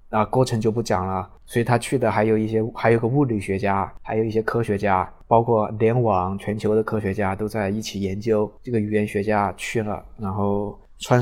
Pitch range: 105-120 Hz